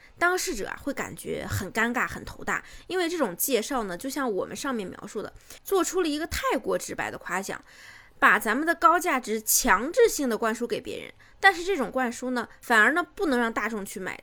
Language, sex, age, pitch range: Chinese, female, 20-39, 215-290 Hz